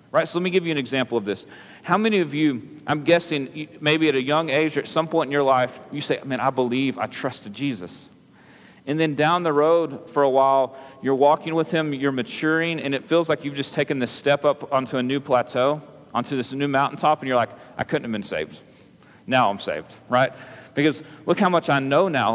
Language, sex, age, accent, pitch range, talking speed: English, male, 40-59, American, 130-160 Hz, 230 wpm